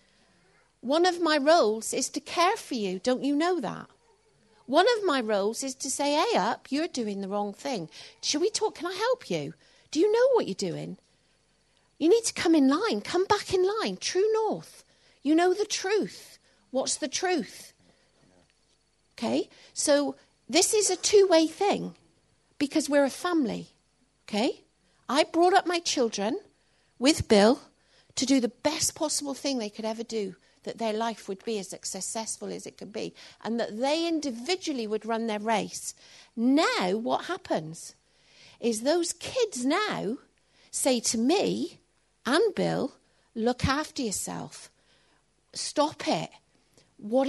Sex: female